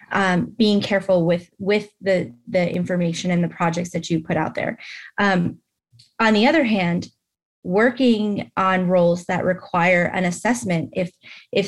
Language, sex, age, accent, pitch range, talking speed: English, female, 20-39, American, 175-215 Hz, 155 wpm